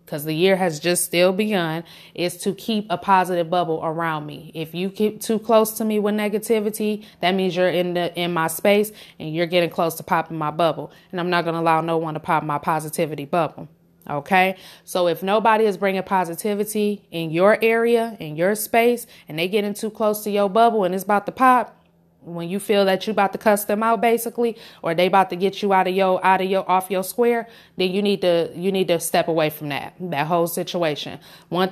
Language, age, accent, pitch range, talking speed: English, 20-39, American, 170-205 Hz, 225 wpm